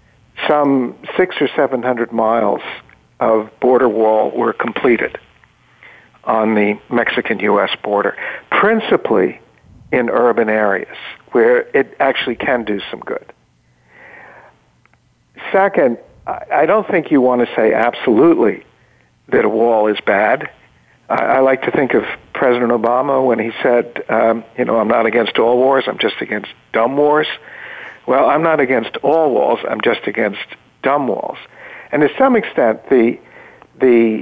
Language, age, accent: English, 60-79, American